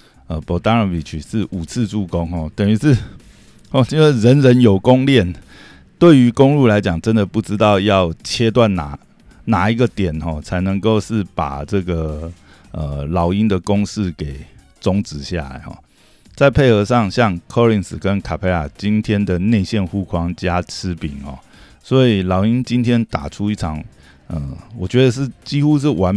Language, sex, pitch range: Chinese, male, 85-115 Hz